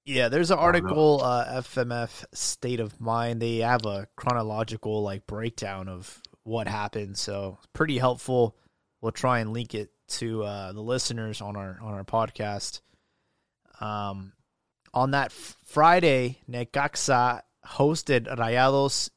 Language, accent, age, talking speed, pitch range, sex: English, American, 20-39, 140 wpm, 110-135 Hz, male